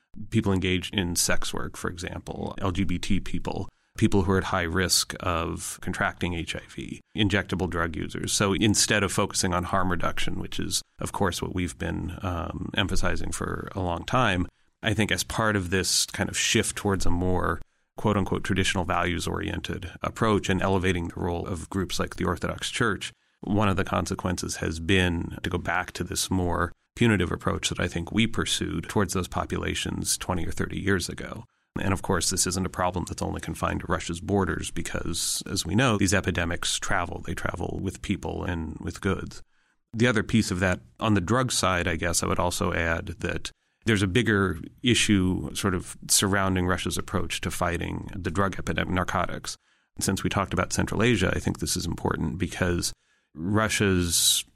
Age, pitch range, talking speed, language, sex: 30-49, 85-100 Hz, 185 wpm, English, male